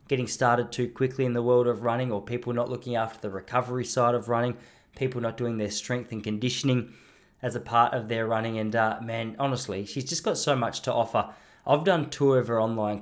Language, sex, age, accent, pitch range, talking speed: English, male, 20-39, Australian, 105-125 Hz, 225 wpm